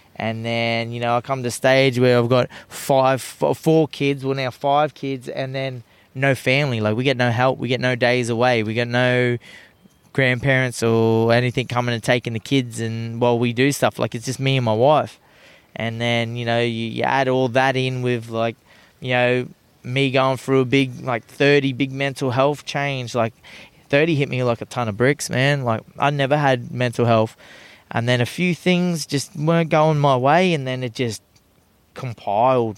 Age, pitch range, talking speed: 20-39, 115-135 Hz, 210 wpm